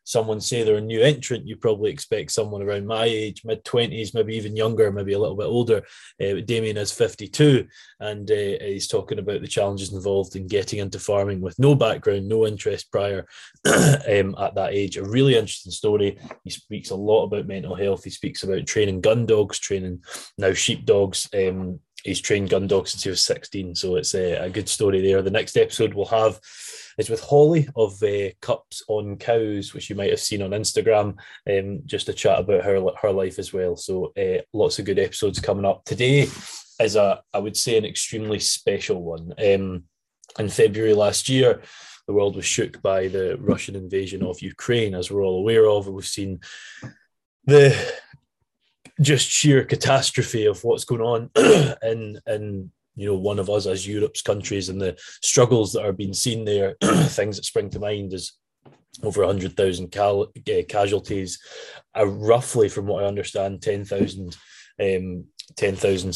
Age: 20-39